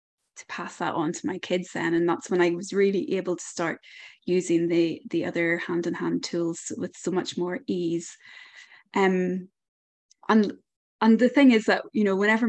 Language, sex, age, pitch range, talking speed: English, female, 20-39, 175-205 Hz, 180 wpm